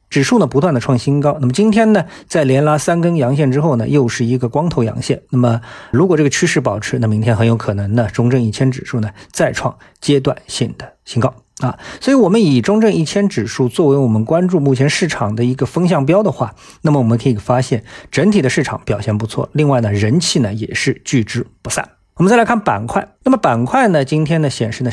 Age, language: 50-69, Chinese